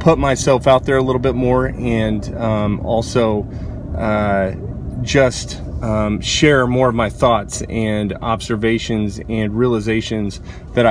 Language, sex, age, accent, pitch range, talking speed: English, male, 30-49, American, 110-130 Hz, 130 wpm